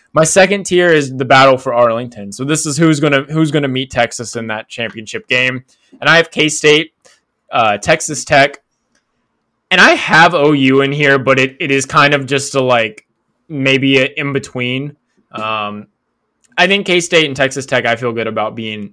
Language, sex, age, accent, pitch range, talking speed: English, male, 10-29, American, 120-155 Hz, 190 wpm